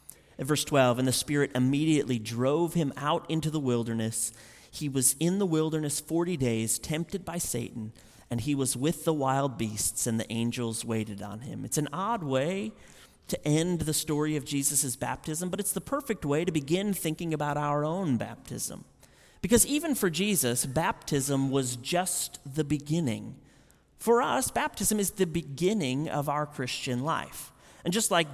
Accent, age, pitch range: American, 30-49, 130-170 Hz